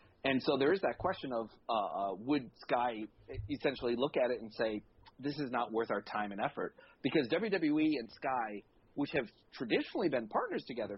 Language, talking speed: English, 185 wpm